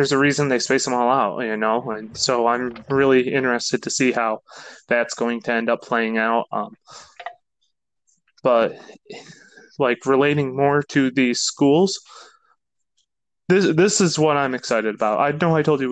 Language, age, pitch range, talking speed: English, 20-39, 120-150 Hz, 170 wpm